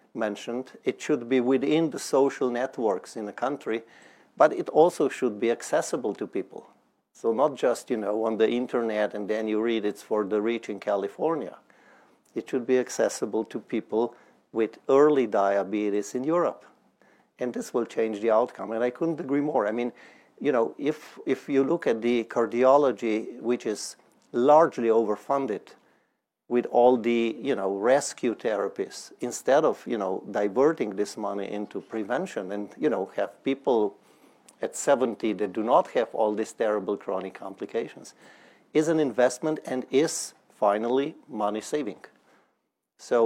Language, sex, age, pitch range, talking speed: English, male, 50-69, 105-130 Hz, 160 wpm